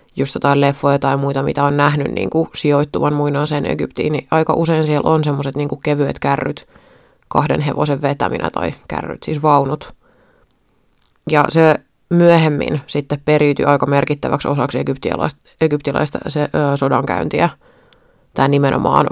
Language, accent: Finnish, native